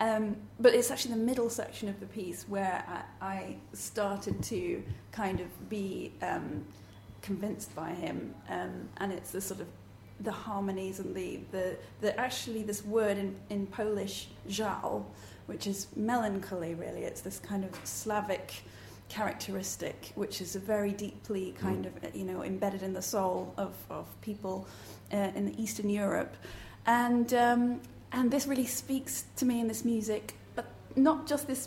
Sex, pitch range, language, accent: female, 185-220 Hz, English, British